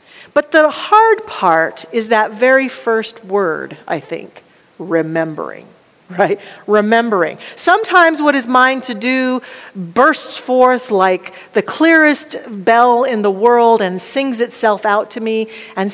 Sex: female